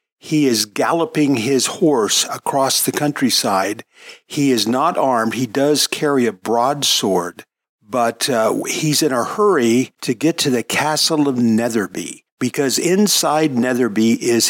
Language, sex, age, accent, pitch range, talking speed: English, male, 50-69, American, 115-145 Hz, 140 wpm